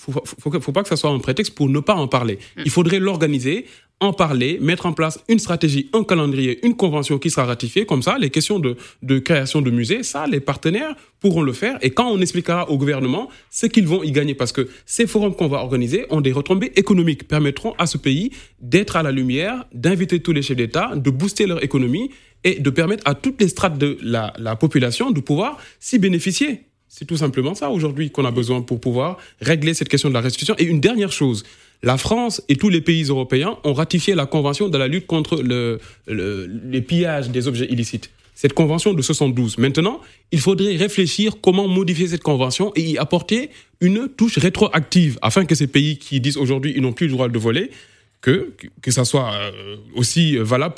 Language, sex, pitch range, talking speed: French, male, 130-185 Hz, 210 wpm